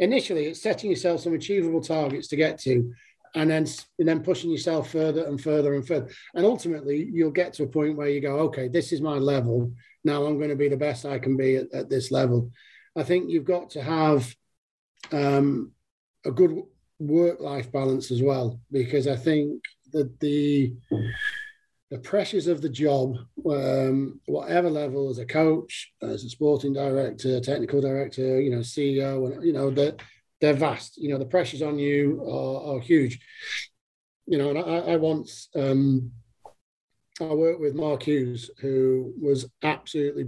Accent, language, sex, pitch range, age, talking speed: British, English, male, 135-160 Hz, 40-59, 175 wpm